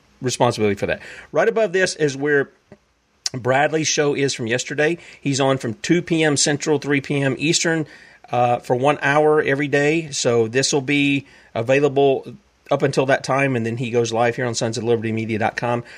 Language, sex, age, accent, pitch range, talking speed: English, male, 40-59, American, 120-145 Hz, 170 wpm